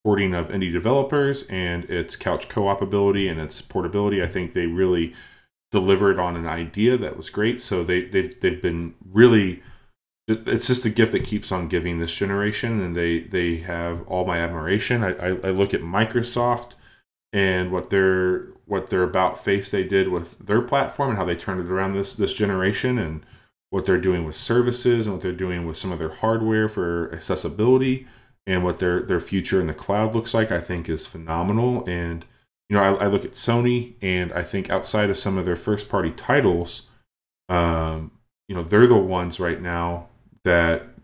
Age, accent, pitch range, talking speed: 20-39, American, 85-105 Hz, 190 wpm